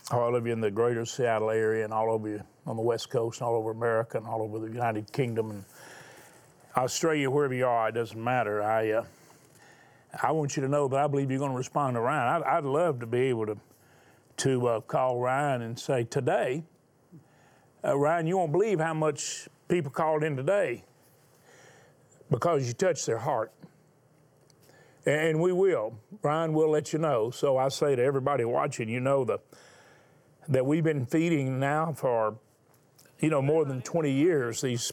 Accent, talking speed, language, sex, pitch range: American, 190 wpm, English, male, 120-155 Hz